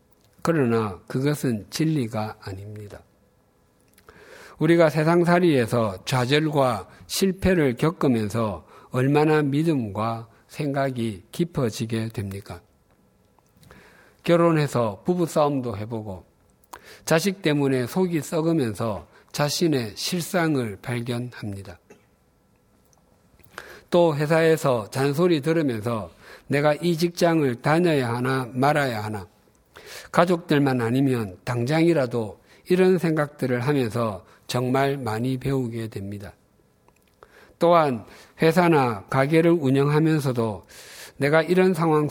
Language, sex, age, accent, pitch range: Korean, male, 50-69, native, 115-155 Hz